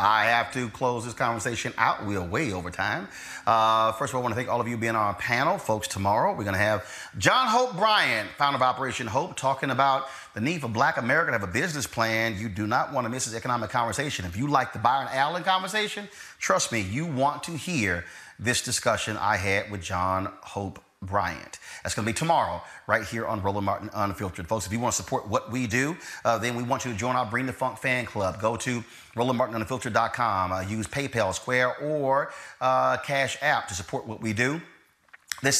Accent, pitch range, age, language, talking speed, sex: American, 110-140 Hz, 30-49, English, 220 wpm, male